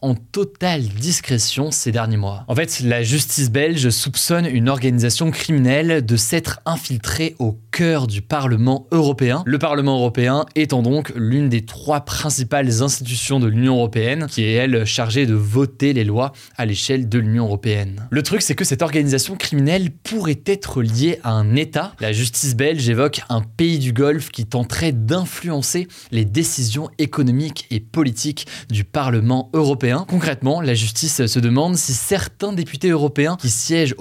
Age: 20-39